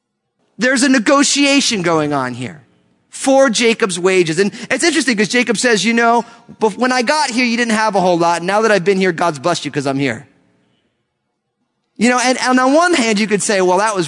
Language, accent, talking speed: English, American, 215 wpm